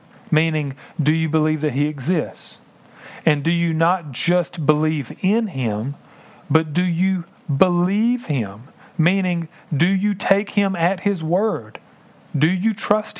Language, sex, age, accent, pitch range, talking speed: English, male, 40-59, American, 125-180 Hz, 140 wpm